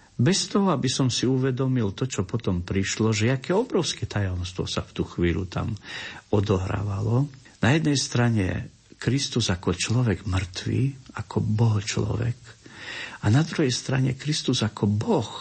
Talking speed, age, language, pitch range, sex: 145 wpm, 50-69, Slovak, 95-120 Hz, male